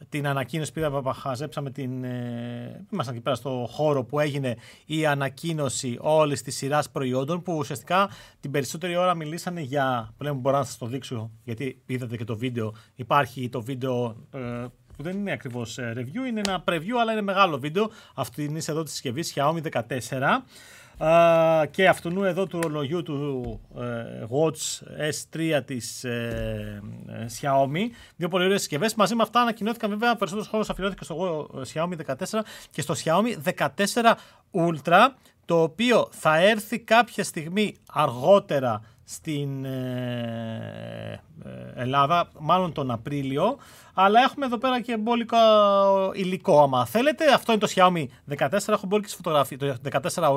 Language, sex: Greek, male